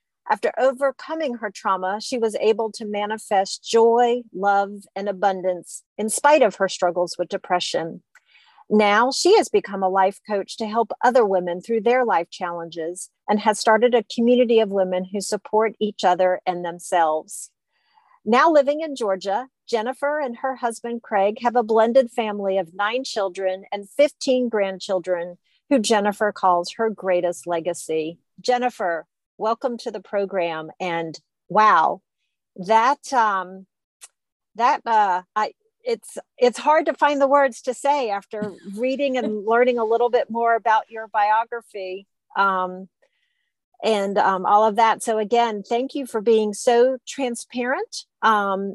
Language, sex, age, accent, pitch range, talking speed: English, female, 40-59, American, 190-240 Hz, 150 wpm